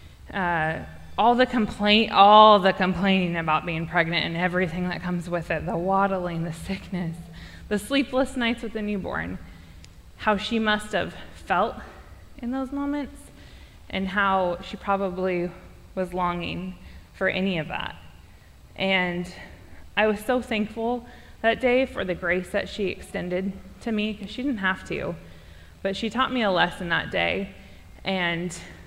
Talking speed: 150 wpm